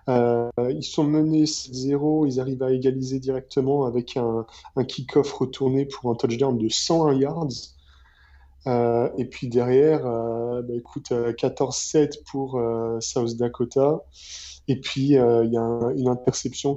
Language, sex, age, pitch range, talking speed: French, male, 20-39, 120-140 Hz, 150 wpm